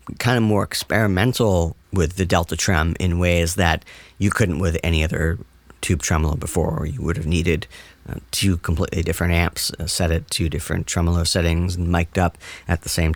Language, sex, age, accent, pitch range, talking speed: English, male, 40-59, American, 80-95 Hz, 190 wpm